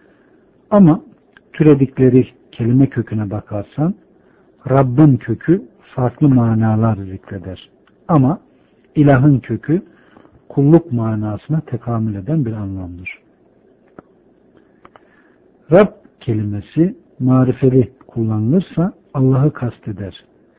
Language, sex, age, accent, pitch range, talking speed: Turkish, male, 60-79, native, 115-165 Hz, 75 wpm